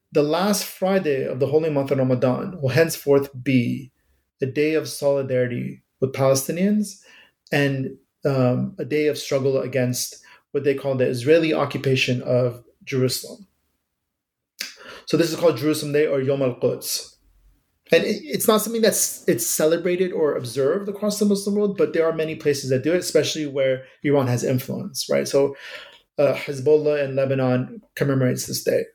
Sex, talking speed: male, 160 wpm